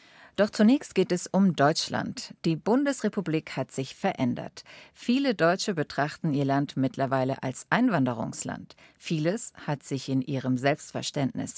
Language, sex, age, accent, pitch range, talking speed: German, female, 50-69, German, 140-190 Hz, 130 wpm